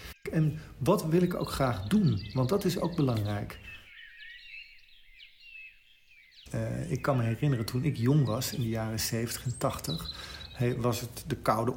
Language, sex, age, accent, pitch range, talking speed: Dutch, male, 40-59, Dutch, 115-145 Hz, 160 wpm